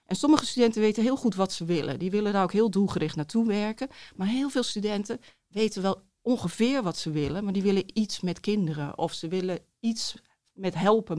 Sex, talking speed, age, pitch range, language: female, 210 wpm, 40-59, 170-215 Hz, Dutch